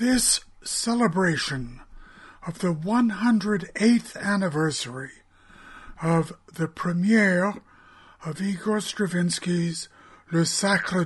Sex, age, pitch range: male, 60-79, 145-195 Hz